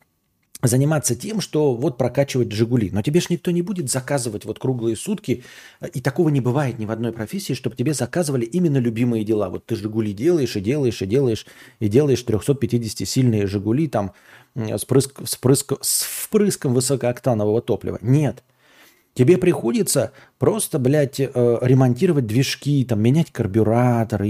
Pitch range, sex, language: 115-145 Hz, male, Russian